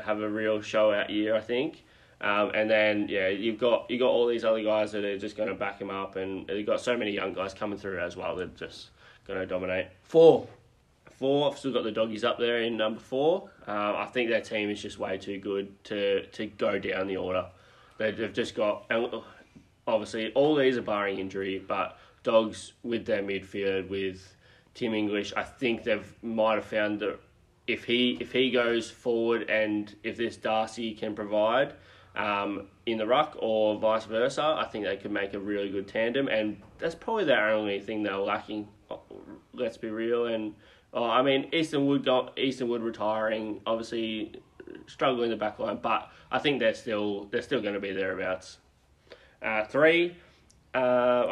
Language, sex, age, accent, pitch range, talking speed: English, male, 20-39, Australian, 100-120 Hz, 190 wpm